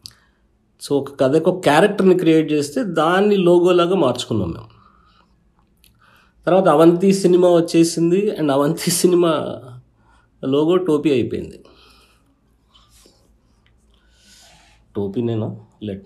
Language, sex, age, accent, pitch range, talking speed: Telugu, male, 50-69, native, 105-150 Hz, 90 wpm